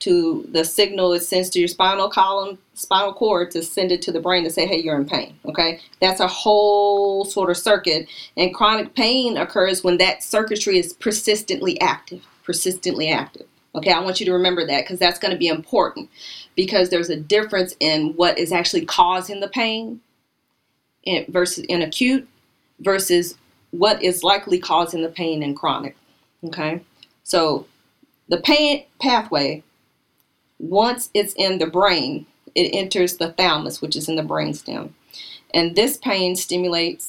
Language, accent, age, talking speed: English, American, 40-59, 160 wpm